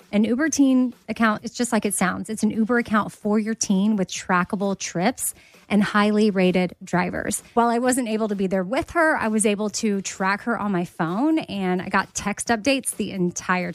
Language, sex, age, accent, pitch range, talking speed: English, female, 30-49, American, 195-235 Hz, 210 wpm